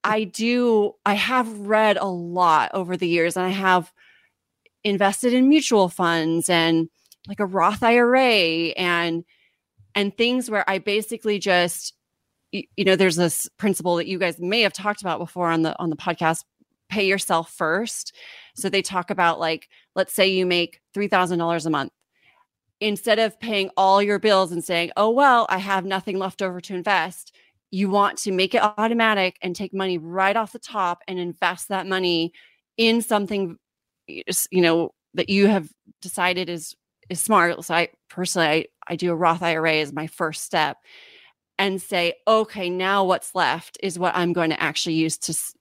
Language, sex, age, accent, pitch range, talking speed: English, female, 30-49, American, 175-205 Hz, 175 wpm